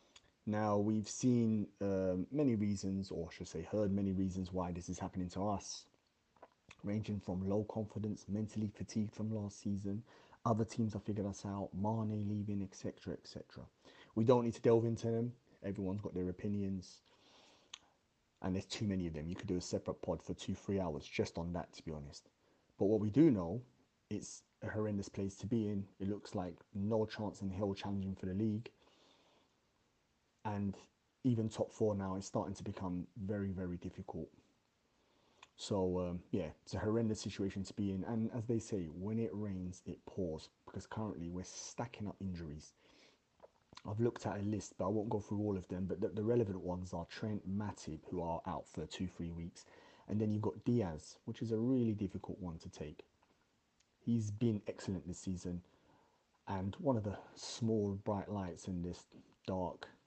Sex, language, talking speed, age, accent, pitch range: male, English, 185 wpm, 30-49, British, 90-110 Hz